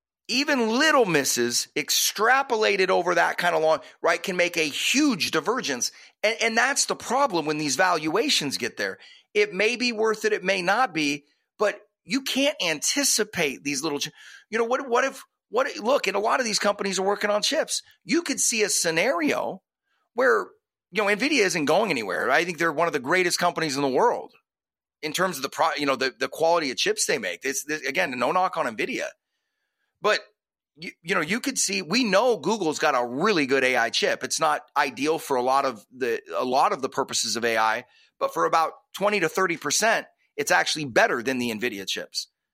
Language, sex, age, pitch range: English, male, 30-49, 160-235 Hz